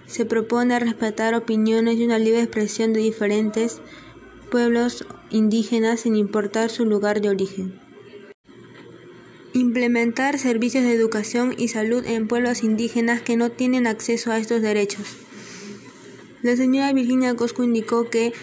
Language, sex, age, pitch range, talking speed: Spanish, female, 20-39, 220-240 Hz, 130 wpm